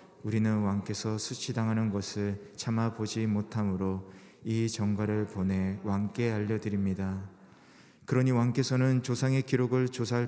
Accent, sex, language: native, male, Korean